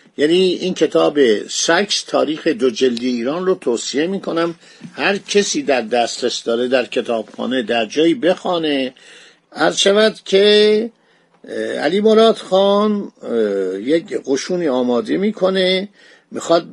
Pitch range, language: 140-195 Hz, Persian